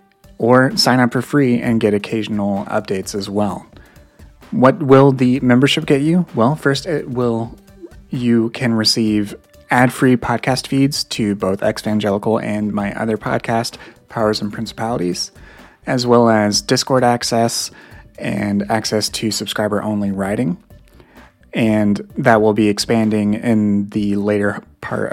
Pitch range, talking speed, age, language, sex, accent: 105-120 Hz, 135 wpm, 30-49, English, male, American